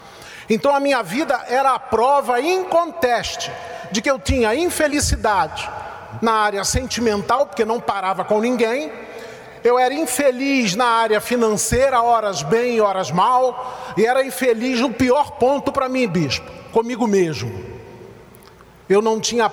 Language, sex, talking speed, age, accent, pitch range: Portuguese, male, 145 wpm, 40-59, Brazilian, 215-265 Hz